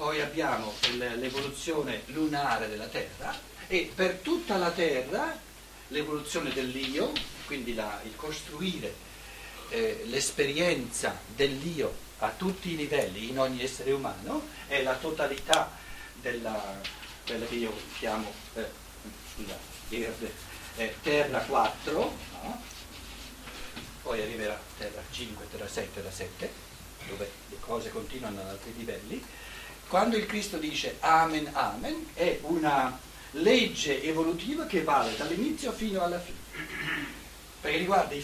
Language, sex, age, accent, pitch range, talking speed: Italian, male, 60-79, native, 130-190 Hz, 120 wpm